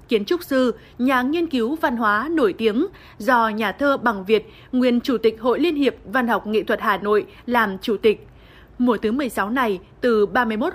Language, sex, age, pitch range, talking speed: Vietnamese, female, 20-39, 220-270 Hz, 200 wpm